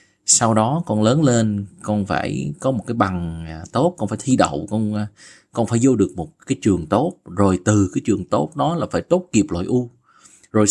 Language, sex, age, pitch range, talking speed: Vietnamese, male, 20-39, 100-145 Hz, 215 wpm